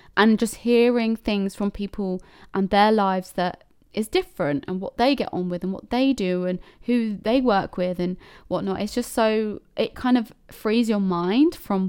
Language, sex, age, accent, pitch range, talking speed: English, female, 20-39, British, 185-235 Hz, 195 wpm